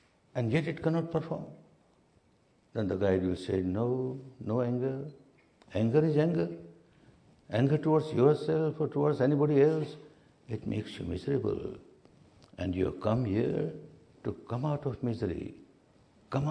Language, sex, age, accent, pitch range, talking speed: English, male, 60-79, Indian, 100-150 Hz, 140 wpm